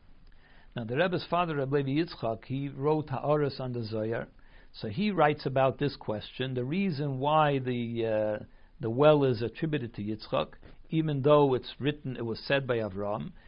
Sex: male